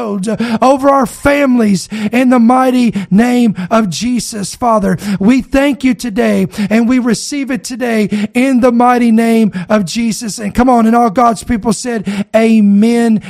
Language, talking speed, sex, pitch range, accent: English, 155 wpm, male, 220-270 Hz, American